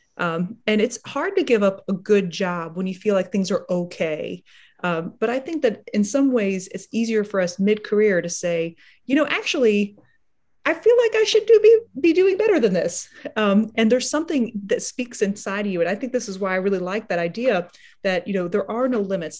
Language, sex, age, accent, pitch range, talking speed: English, female, 30-49, American, 185-245 Hz, 225 wpm